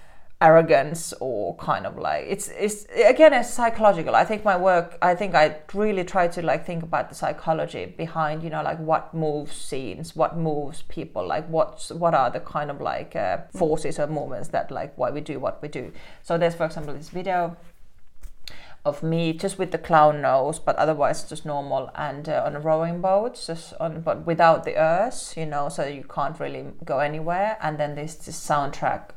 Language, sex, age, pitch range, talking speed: English, female, 30-49, 150-170 Hz, 200 wpm